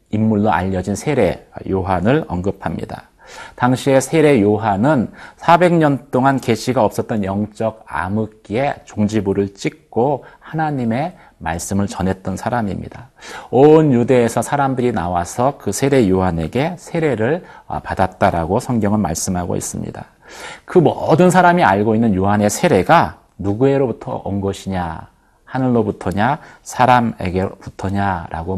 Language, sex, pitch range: Korean, male, 100-135 Hz